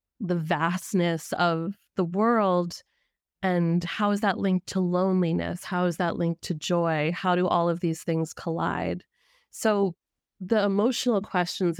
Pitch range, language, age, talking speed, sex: 165-195 Hz, English, 20-39, 145 wpm, female